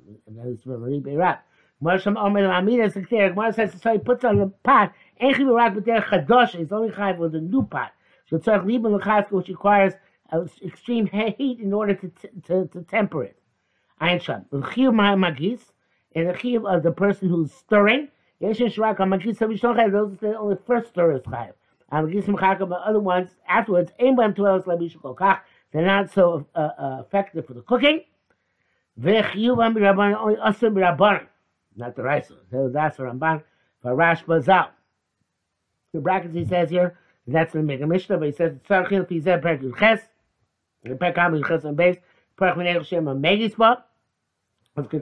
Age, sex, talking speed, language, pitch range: 60-79, male, 105 wpm, English, 165-215 Hz